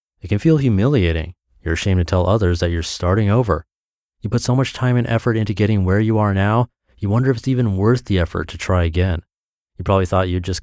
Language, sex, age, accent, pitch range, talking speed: English, male, 30-49, American, 90-125 Hz, 235 wpm